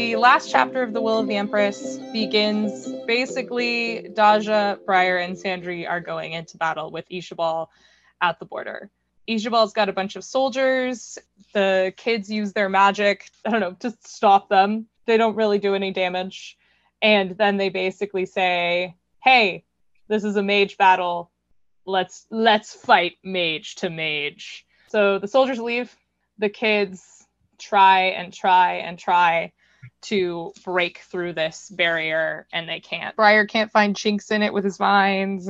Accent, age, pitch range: American, 20-39, 185-225 Hz